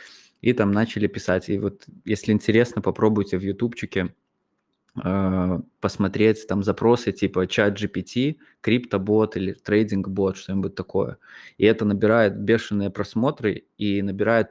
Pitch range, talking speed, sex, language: 100-110 Hz, 120 wpm, male, Russian